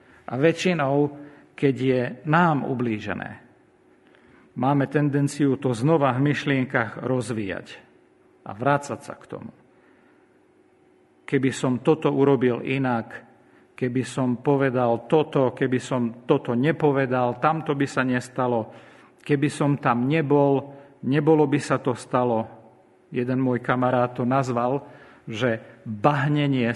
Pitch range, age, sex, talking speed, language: 125-150 Hz, 50-69, male, 115 wpm, Slovak